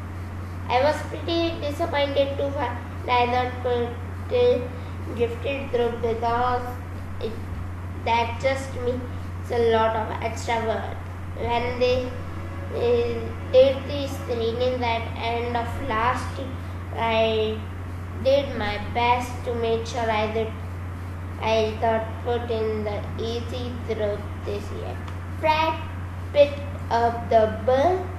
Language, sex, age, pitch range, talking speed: Hindi, female, 20-39, 90-110 Hz, 120 wpm